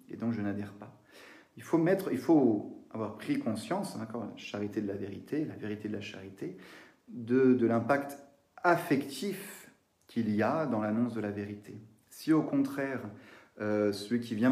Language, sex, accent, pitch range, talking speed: French, male, French, 105-130 Hz, 180 wpm